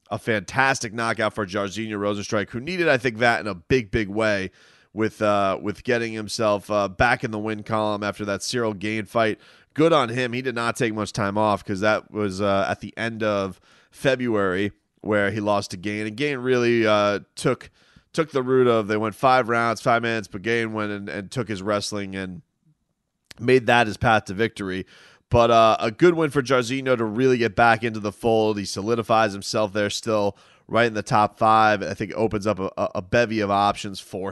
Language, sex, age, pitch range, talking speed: English, male, 30-49, 100-120 Hz, 210 wpm